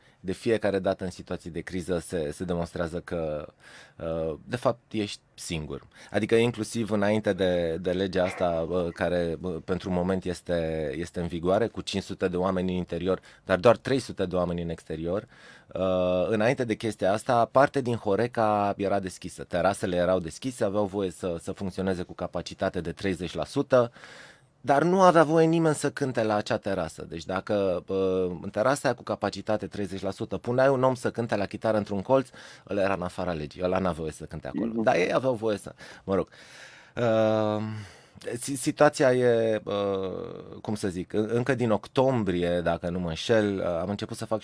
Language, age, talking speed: Romanian, 20-39, 170 wpm